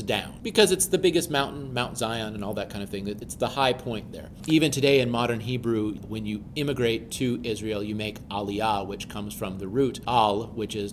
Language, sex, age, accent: English, male, 40-59, American